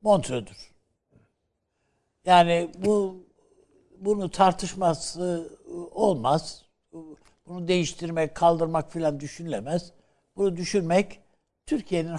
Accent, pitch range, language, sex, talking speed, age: native, 140-185 Hz, Turkish, male, 70 wpm, 60-79